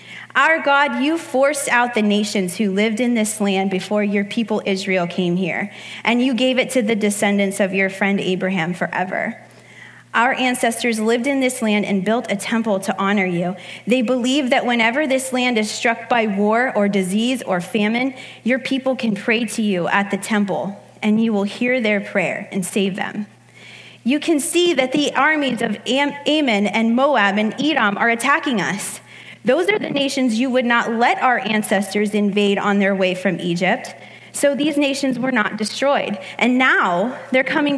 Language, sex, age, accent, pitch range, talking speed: English, female, 20-39, American, 200-260 Hz, 185 wpm